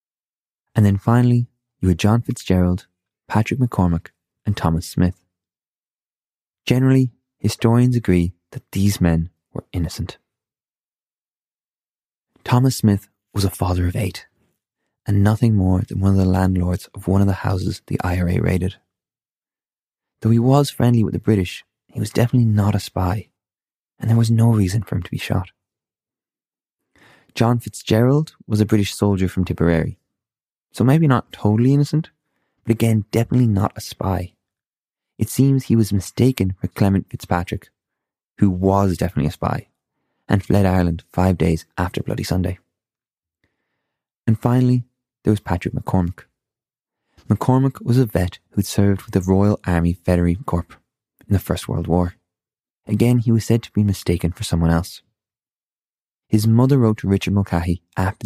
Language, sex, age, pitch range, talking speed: English, male, 20-39, 90-115 Hz, 150 wpm